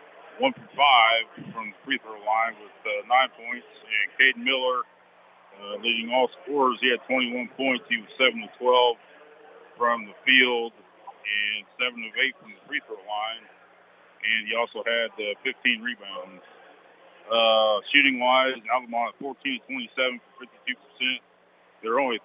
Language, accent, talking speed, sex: English, American, 140 wpm, male